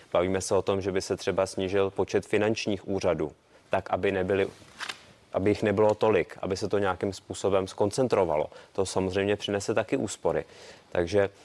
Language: Czech